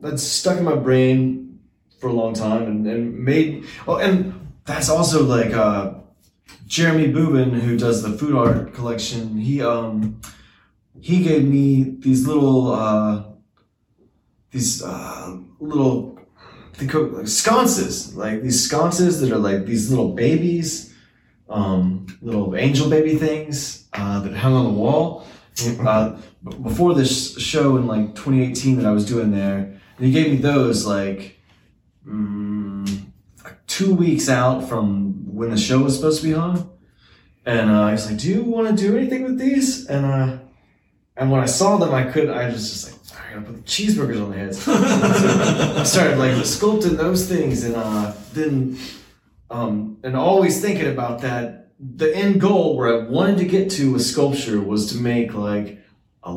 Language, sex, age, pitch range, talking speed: English, male, 20-39, 105-155 Hz, 170 wpm